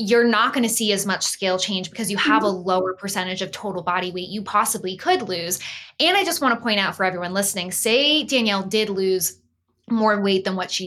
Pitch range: 185-230 Hz